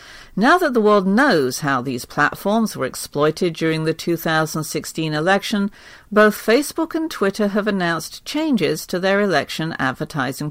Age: 50-69